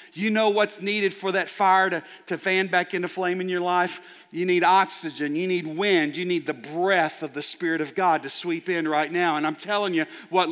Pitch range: 160-190 Hz